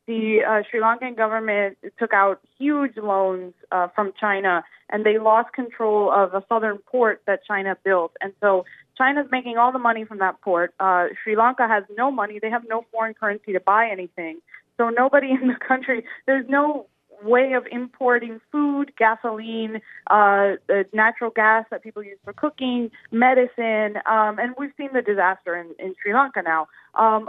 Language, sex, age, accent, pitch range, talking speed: English, female, 20-39, American, 195-235 Hz, 175 wpm